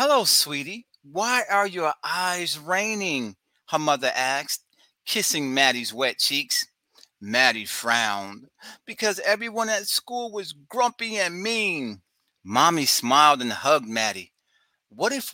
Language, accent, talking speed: English, American, 120 wpm